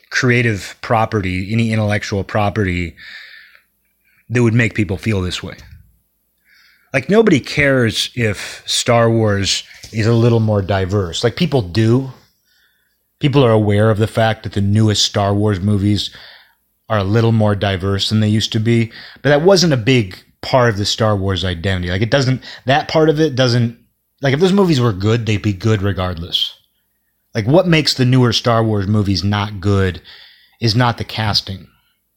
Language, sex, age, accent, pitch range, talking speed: English, male, 30-49, American, 100-125 Hz, 170 wpm